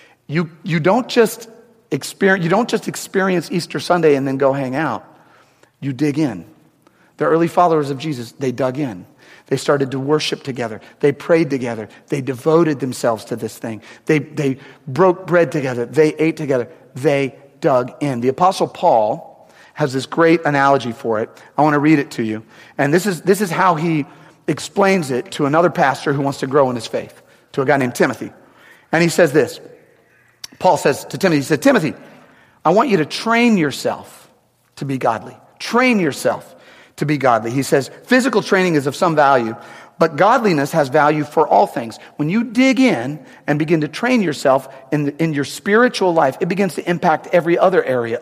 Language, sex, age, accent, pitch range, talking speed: English, male, 40-59, American, 135-180 Hz, 190 wpm